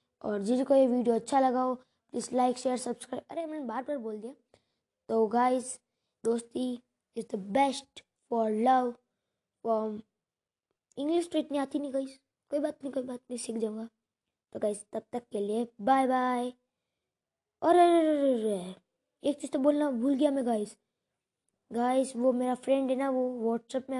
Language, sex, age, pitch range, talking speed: Hindi, female, 20-39, 230-255 Hz, 175 wpm